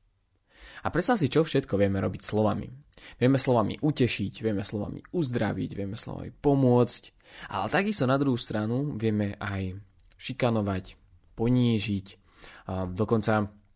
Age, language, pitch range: 20-39, Slovak, 100-125 Hz